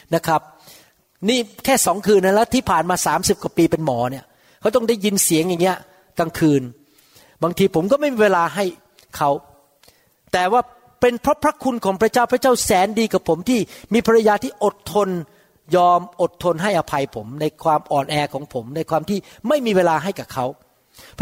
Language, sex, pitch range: Thai, male, 165-220 Hz